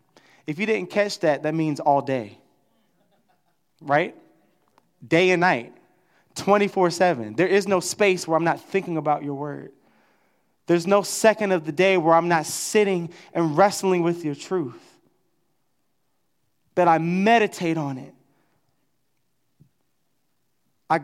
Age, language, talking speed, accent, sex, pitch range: 20-39, English, 135 wpm, American, male, 155-185 Hz